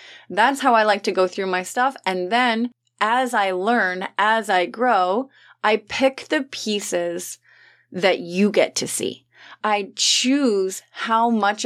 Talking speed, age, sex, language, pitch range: 155 wpm, 30-49, female, English, 180-225 Hz